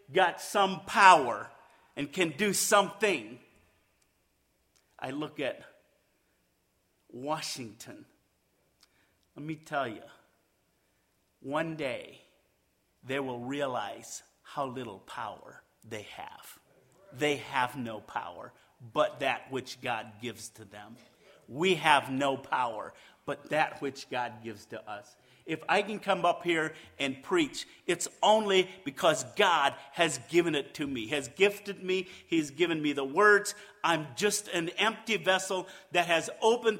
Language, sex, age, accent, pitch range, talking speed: English, male, 50-69, American, 140-205 Hz, 130 wpm